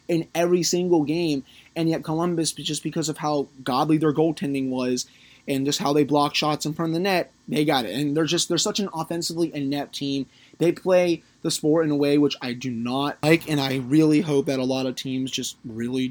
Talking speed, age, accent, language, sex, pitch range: 225 wpm, 20-39, American, English, male, 130-165 Hz